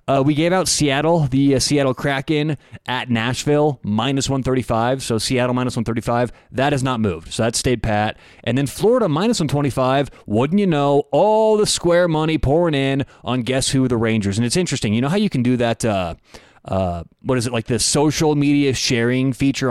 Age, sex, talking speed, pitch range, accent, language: 30-49, male, 200 wpm, 115-150 Hz, American, English